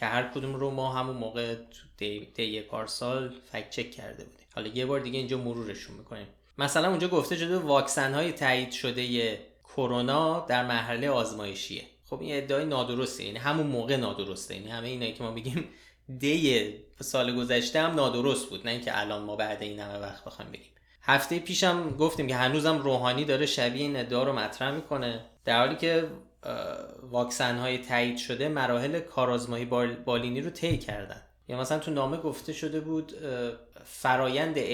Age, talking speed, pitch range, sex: 20-39, 160 wpm, 120-145 Hz, male